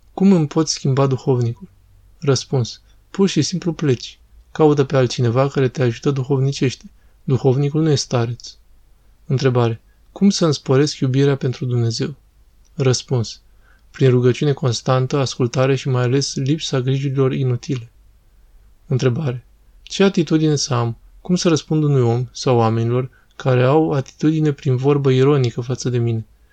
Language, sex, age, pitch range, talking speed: Romanian, male, 20-39, 120-145 Hz, 140 wpm